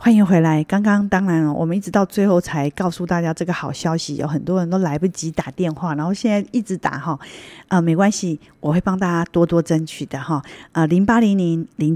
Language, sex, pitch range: Chinese, female, 155-195 Hz